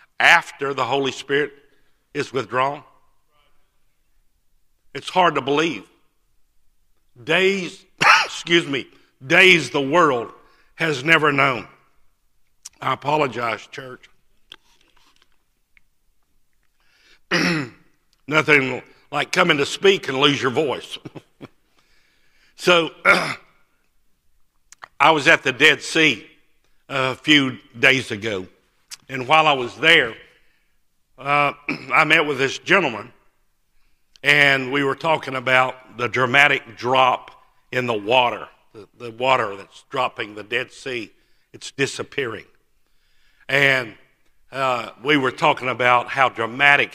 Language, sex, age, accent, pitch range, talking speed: English, male, 60-79, American, 130-155 Hz, 105 wpm